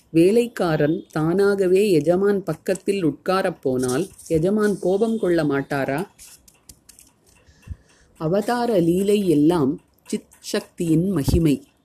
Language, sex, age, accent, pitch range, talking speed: Tamil, female, 30-49, native, 160-200 Hz, 75 wpm